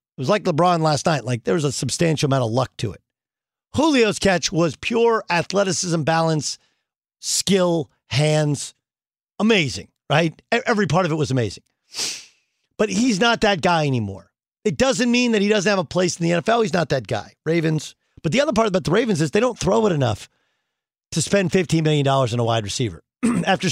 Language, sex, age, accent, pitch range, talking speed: English, male, 50-69, American, 145-215 Hz, 195 wpm